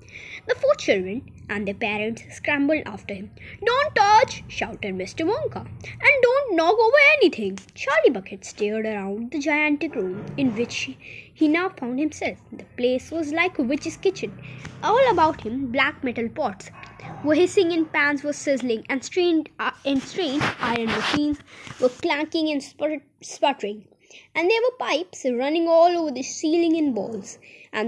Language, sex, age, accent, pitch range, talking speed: Hindi, female, 20-39, native, 235-330 Hz, 160 wpm